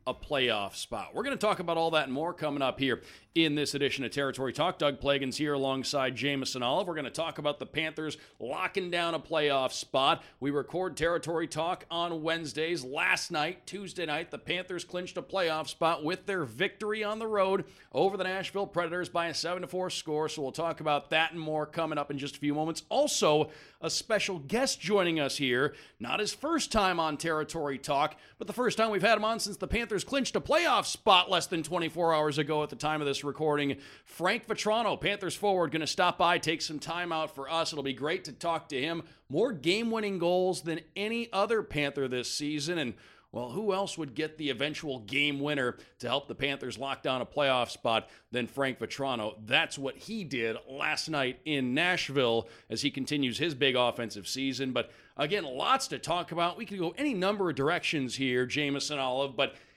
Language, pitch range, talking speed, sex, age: English, 140-180 Hz, 205 wpm, male, 40-59